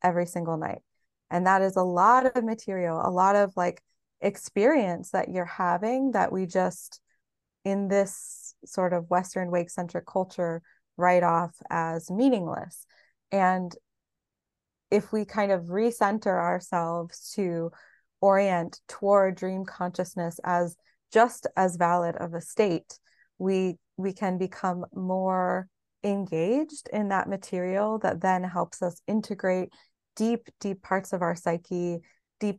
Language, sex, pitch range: English, female, 175-195 Hz